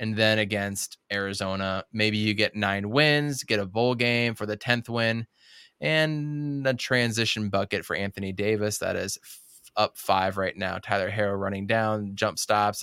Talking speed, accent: 175 wpm, American